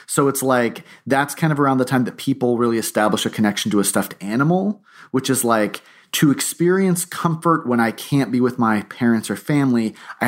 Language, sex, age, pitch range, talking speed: English, male, 30-49, 105-140 Hz, 205 wpm